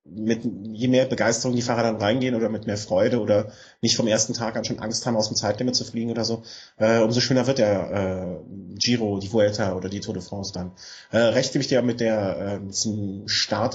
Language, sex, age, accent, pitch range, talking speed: German, male, 30-49, German, 100-115 Hz, 230 wpm